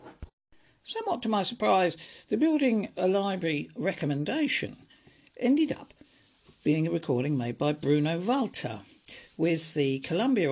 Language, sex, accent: English, male, British